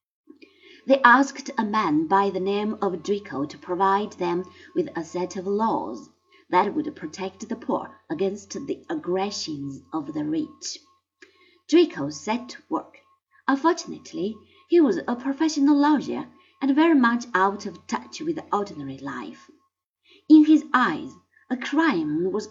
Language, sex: Chinese, female